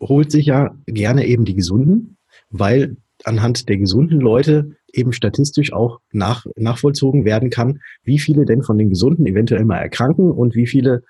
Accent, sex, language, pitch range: German, male, German, 110-135 Hz